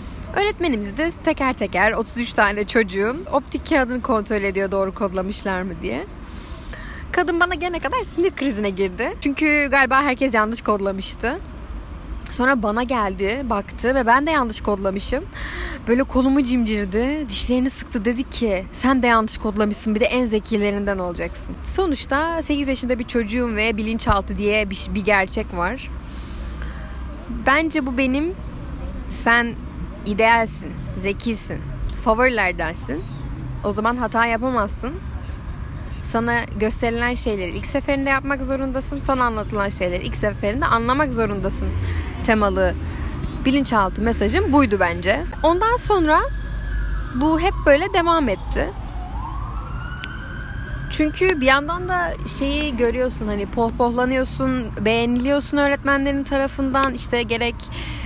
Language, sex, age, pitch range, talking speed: Turkish, female, 10-29, 205-275 Hz, 120 wpm